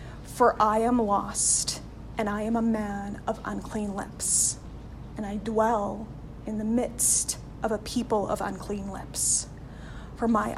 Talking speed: 145 wpm